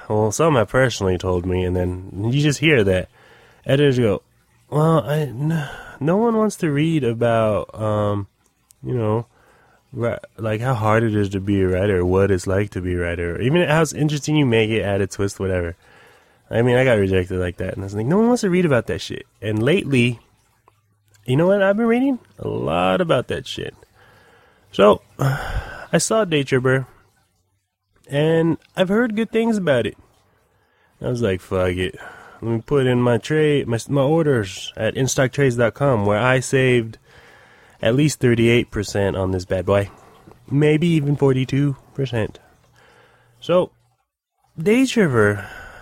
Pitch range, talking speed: 105-145 Hz, 170 wpm